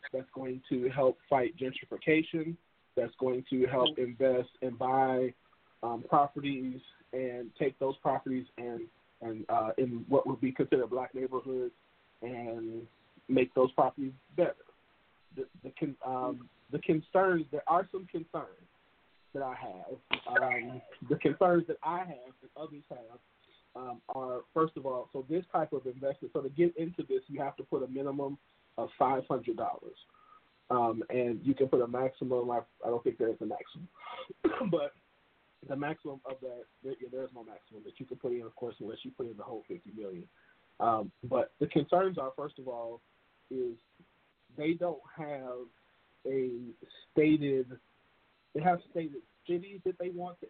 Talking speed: 165 wpm